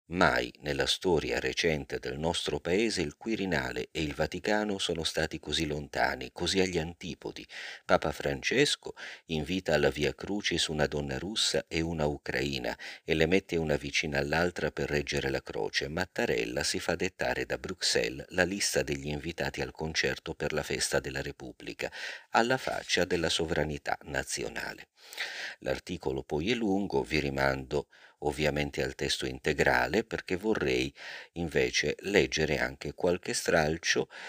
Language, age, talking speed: Italian, 50-69, 140 wpm